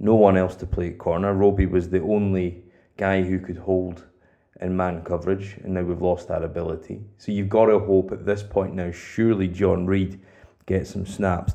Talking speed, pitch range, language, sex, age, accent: 205 wpm, 90-105 Hz, English, male, 20-39, British